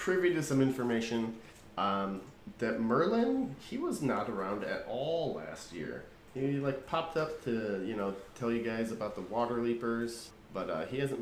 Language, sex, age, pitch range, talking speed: English, male, 30-49, 100-140 Hz, 175 wpm